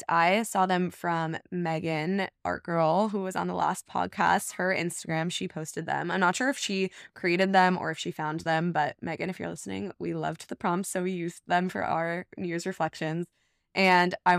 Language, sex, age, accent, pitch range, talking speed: English, female, 20-39, American, 160-185 Hz, 210 wpm